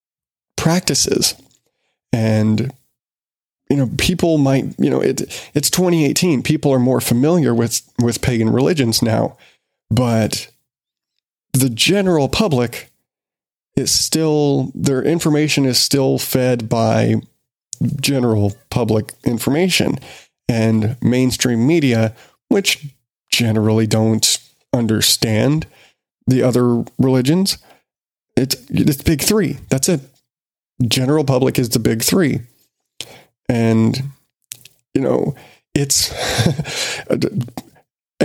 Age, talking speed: 30-49, 95 wpm